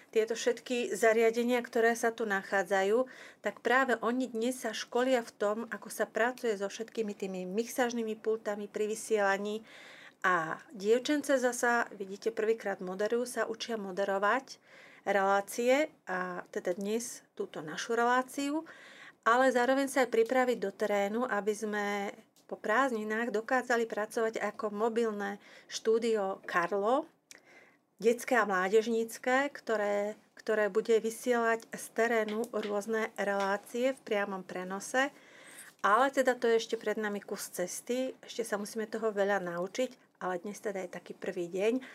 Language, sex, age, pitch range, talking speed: Slovak, female, 40-59, 200-245 Hz, 135 wpm